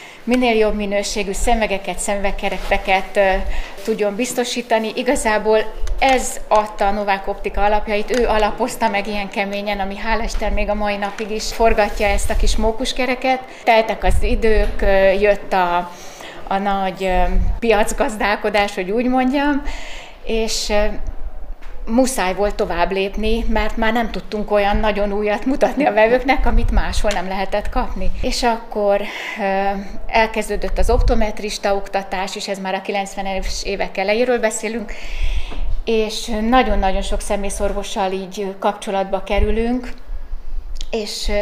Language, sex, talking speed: Hungarian, female, 120 wpm